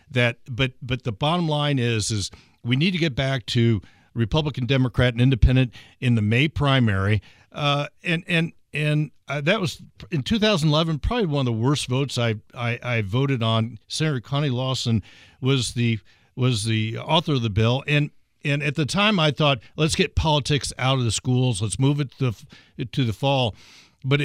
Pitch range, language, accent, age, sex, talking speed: 115-150 Hz, English, American, 60-79, male, 190 wpm